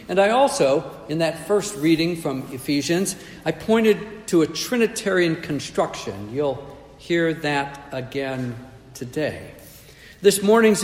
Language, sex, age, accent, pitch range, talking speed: English, male, 60-79, American, 135-195 Hz, 120 wpm